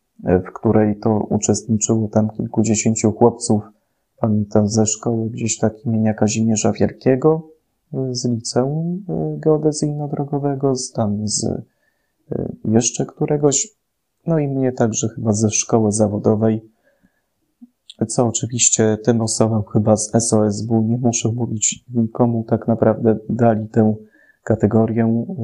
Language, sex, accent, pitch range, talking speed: Polish, male, native, 110-125 Hz, 110 wpm